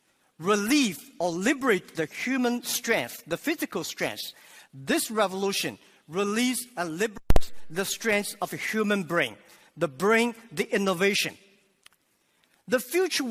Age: 50-69